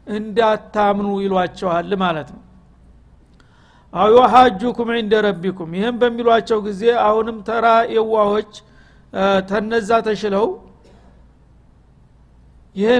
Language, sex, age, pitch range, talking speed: Amharic, male, 60-79, 195-230 Hz, 90 wpm